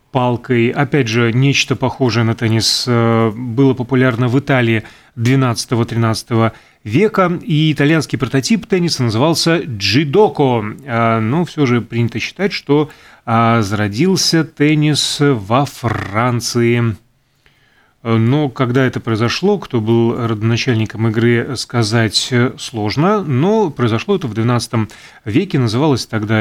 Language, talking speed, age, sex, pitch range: Russian, 105 wpm, 30-49, male, 115-145 Hz